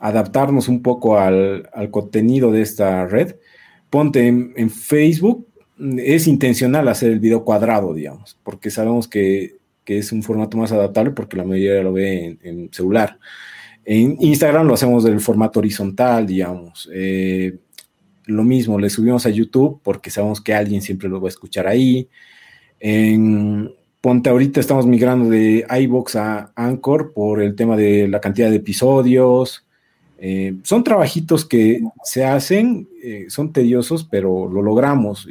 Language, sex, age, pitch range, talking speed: Spanish, male, 40-59, 105-140 Hz, 155 wpm